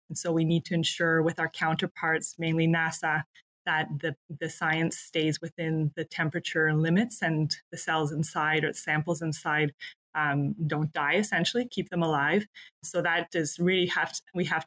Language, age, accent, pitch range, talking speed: English, 20-39, American, 160-180 Hz, 170 wpm